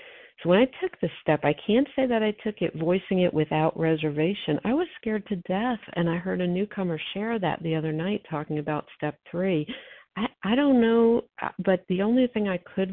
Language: English